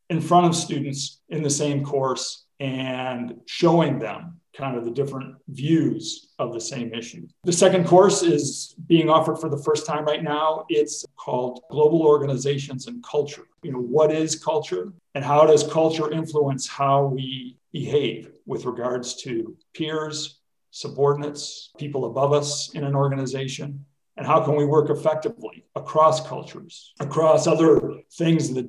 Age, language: 50-69, English